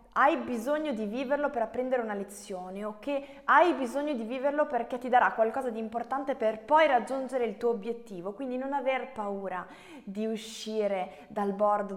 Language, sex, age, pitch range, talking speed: Italian, female, 20-39, 185-225 Hz, 170 wpm